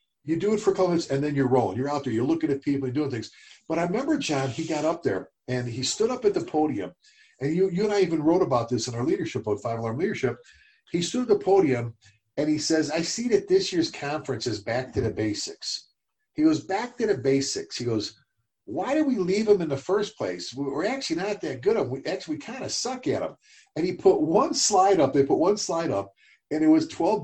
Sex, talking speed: male, 260 wpm